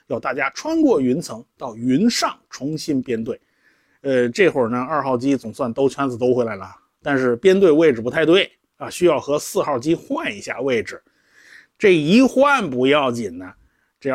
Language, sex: Chinese, male